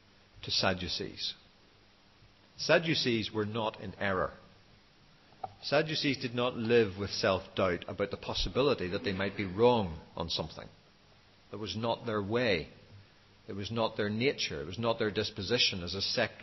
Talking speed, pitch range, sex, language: 155 wpm, 100-130 Hz, male, English